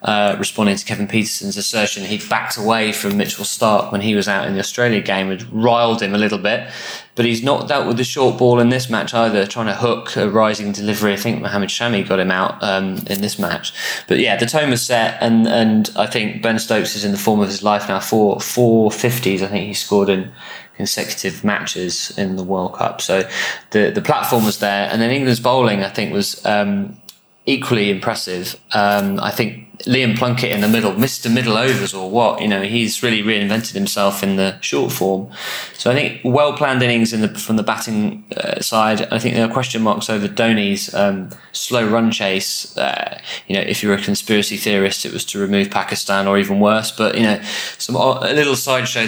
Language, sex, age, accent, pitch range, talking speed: English, male, 20-39, British, 100-115 Hz, 215 wpm